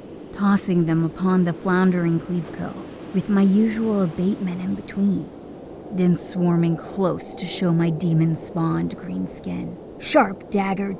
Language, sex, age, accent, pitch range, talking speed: English, female, 30-49, American, 170-195 Hz, 125 wpm